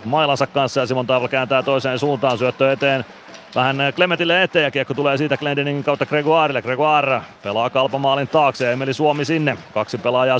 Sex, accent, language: male, native, Finnish